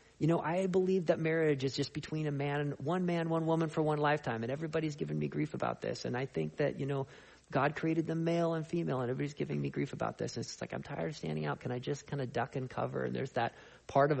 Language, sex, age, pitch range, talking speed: English, male, 40-59, 115-150 Hz, 275 wpm